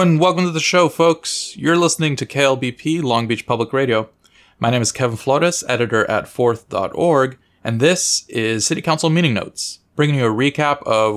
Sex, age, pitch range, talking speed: male, 20-39, 115-165 Hz, 175 wpm